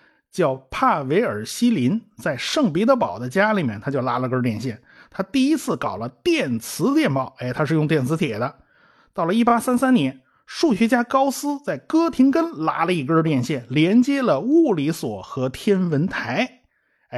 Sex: male